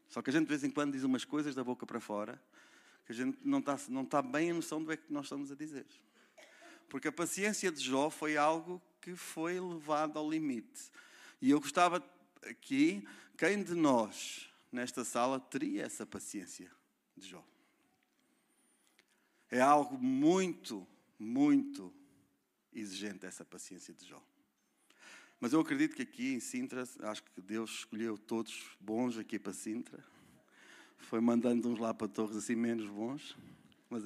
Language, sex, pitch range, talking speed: Portuguese, male, 115-190 Hz, 165 wpm